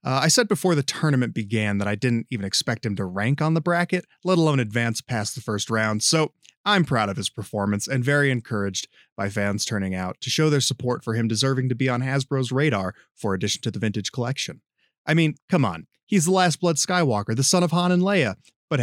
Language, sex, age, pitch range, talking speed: English, male, 30-49, 110-150 Hz, 230 wpm